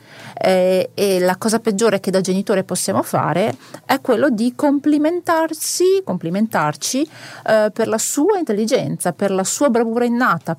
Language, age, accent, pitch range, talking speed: Italian, 40-59, native, 180-235 Hz, 135 wpm